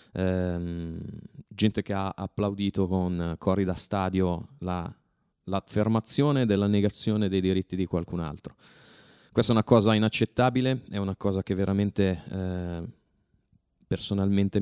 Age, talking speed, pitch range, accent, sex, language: 20-39, 125 wpm, 95-105 Hz, native, male, Italian